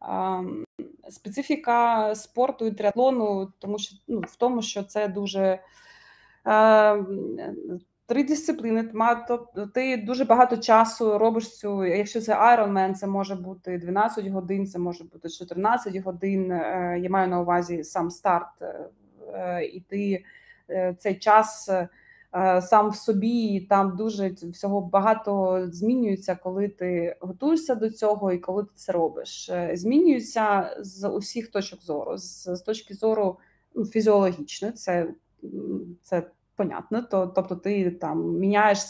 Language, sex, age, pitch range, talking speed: Ukrainian, female, 20-39, 185-220 Hz, 130 wpm